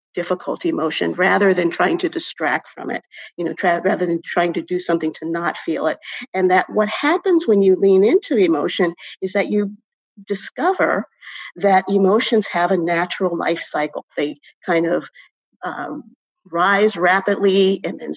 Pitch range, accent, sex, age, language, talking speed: 170-210 Hz, American, female, 50-69, English, 160 wpm